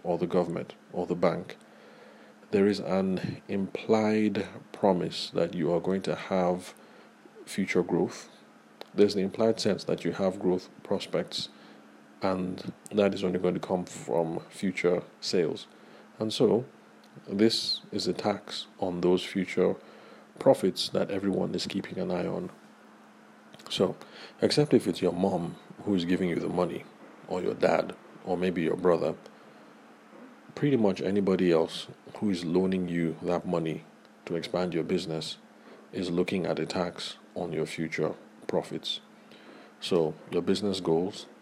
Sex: male